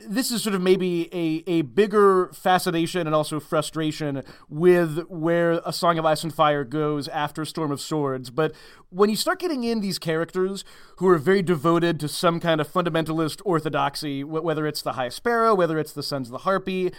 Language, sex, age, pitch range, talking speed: English, male, 30-49, 150-185 Hz, 195 wpm